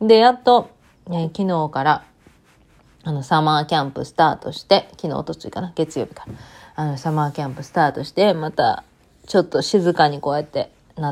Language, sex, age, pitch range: Japanese, female, 30-49, 150-210 Hz